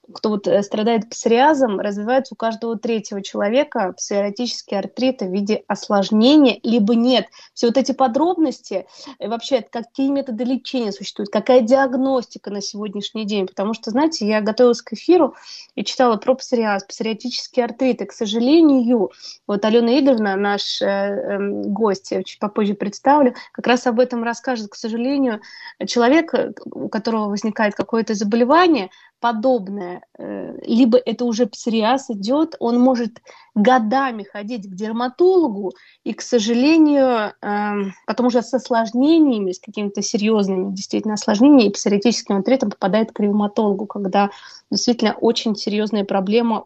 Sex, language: female, Russian